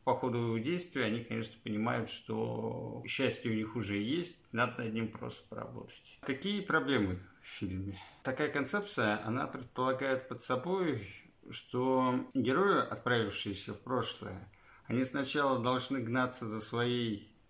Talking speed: 135 wpm